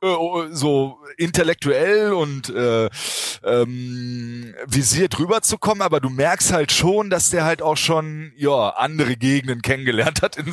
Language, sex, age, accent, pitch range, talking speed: German, male, 30-49, German, 110-150 Hz, 130 wpm